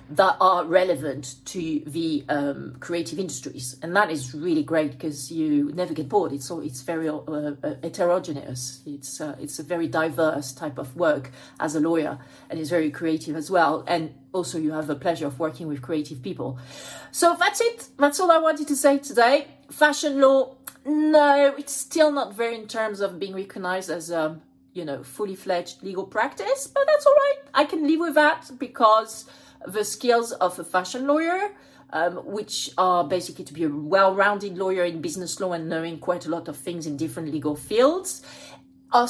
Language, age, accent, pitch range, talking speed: English, 40-59, French, 155-250 Hz, 190 wpm